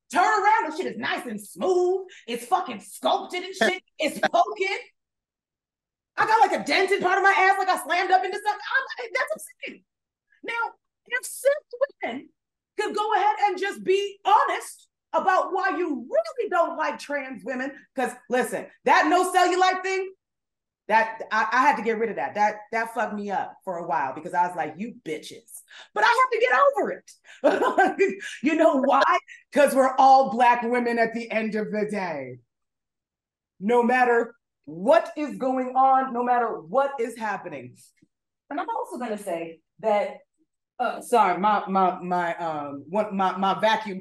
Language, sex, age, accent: English, female, 30-49, American